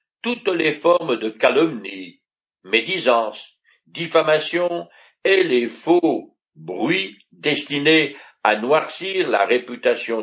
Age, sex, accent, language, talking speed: 60-79, male, French, French, 95 wpm